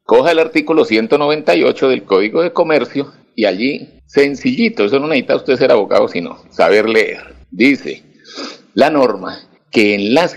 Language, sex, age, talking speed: Spanish, male, 60-79, 150 wpm